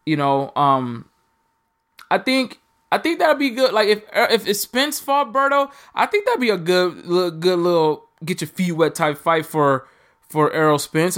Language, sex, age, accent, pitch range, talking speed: English, male, 20-39, American, 140-185 Hz, 185 wpm